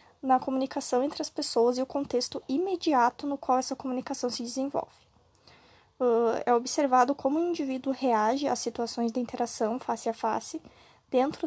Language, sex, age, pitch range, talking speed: Portuguese, female, 20-39, 245-285 Hz, 150 wpm